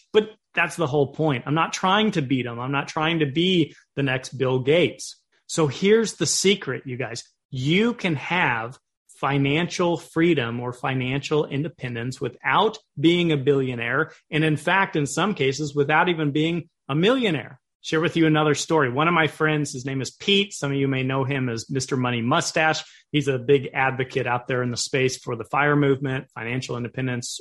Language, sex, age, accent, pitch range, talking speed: English, male, 30-49, American, 135-170 Hz, 190 wpm